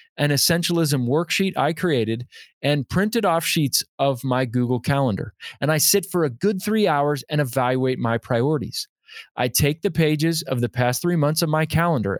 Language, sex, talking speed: English, male, 180 wpm